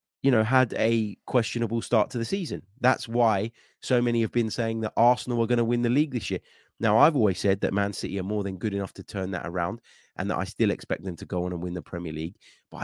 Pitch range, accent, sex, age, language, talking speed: 90-115 Hz, British, male, 20-39, English, 265 wpm